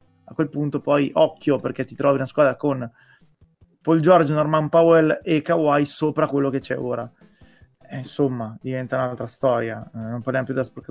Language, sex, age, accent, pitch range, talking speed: Italian, male, 20-39, native, 125-155 Hz, 180 wpm